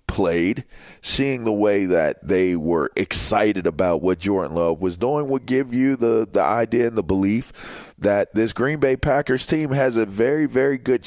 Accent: American